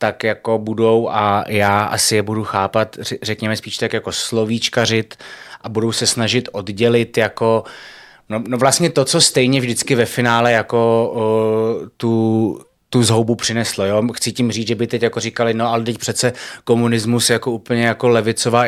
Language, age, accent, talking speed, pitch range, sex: Czech, 20-39, native, 165 wpm, 110-125 Hz, male